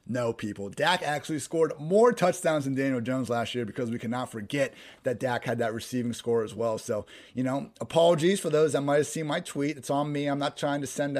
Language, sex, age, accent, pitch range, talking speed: English, male, 30-49, American, 120-145 Hz, 235 wpm